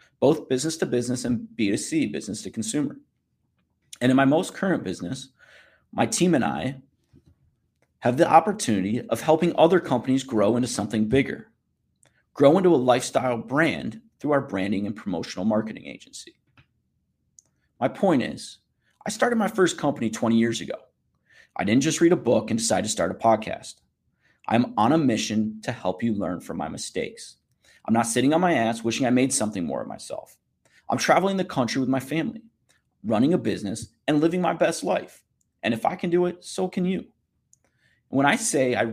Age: 30-49